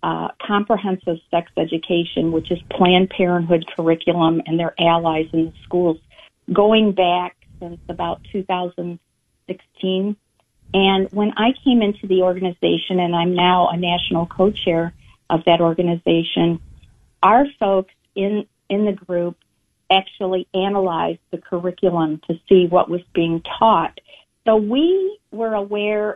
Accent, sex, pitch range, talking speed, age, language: American, female, 170-200 Hz, 130 wpm, 50-69, English